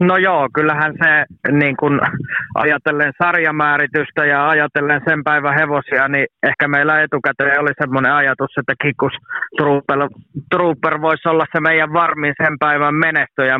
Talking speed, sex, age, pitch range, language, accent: 130 wpm, male, 20-39, 135-155 Hz, Finnish, native